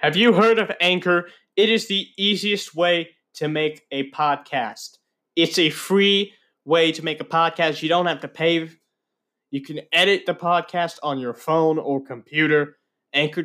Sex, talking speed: male, 170 wpm